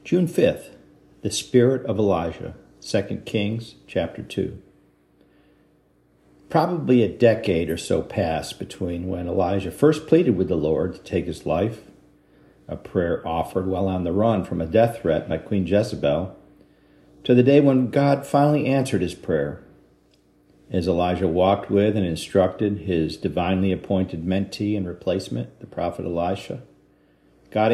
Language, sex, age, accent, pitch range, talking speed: English, male, 50-69, American, 80-115 Hz, 145 wpm